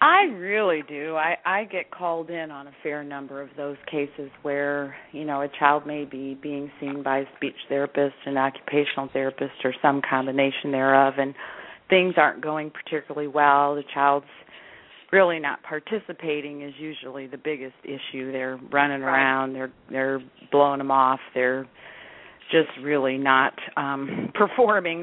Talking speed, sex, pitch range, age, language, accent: 155 wpm, female, 140-180 Hz, 40-59, English, American